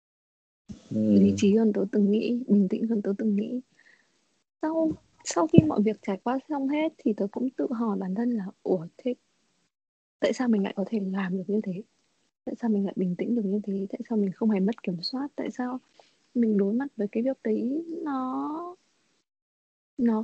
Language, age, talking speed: Vietnamese, 20-39, 205 wpm